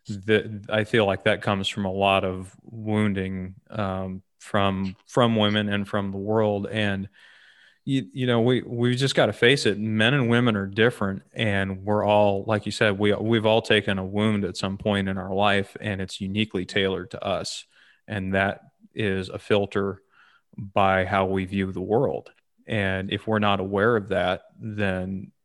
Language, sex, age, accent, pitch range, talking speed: English, male, 30-49, American, 95-105 Hz, 185 wpm